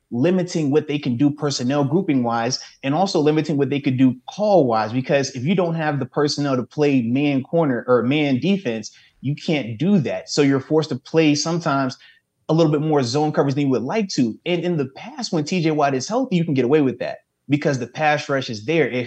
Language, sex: English, male